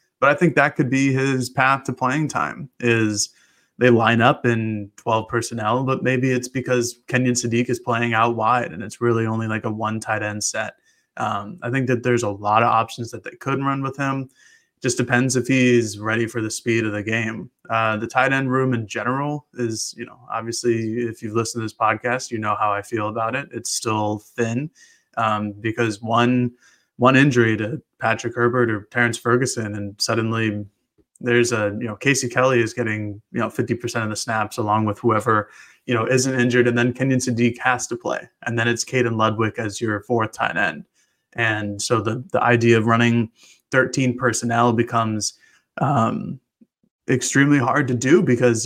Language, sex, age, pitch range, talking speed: English, male, 20-39, 110-125 Hz, 195 wpm